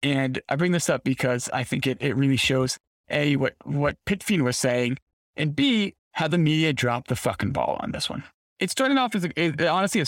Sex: male